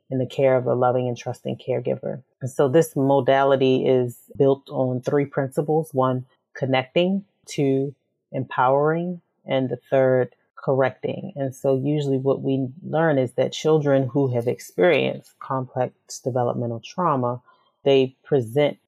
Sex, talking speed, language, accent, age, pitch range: female, 135 wpm, English, American, 30-49, 125-140 Hz